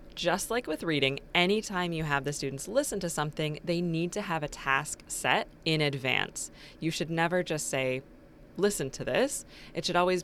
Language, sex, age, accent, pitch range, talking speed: English, female, 20-39, American, 140-185 Hz, 190 wpm